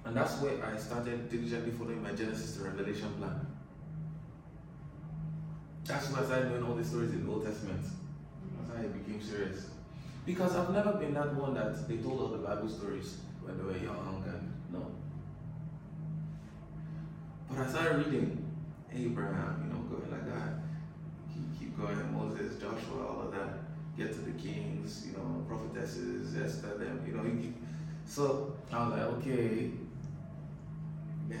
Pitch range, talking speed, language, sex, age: 130-160 Hz, 160 wpm, English, male, 20-39